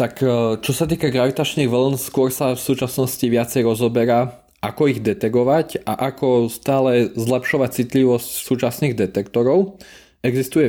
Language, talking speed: Slovak, 130 wpm